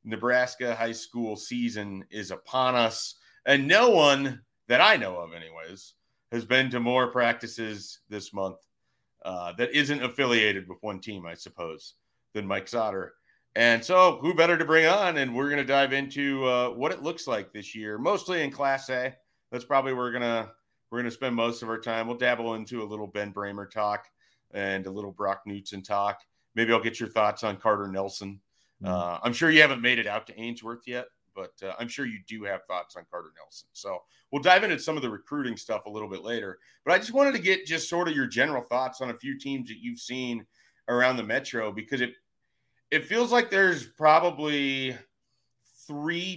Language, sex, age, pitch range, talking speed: English, male, 40-59, 110-140 Hz, 200 wpm